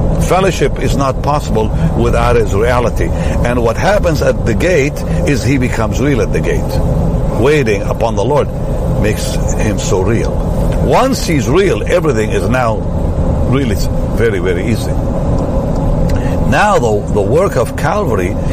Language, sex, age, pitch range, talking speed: English, male, 60-79, 85-110 Hz, 145 wpm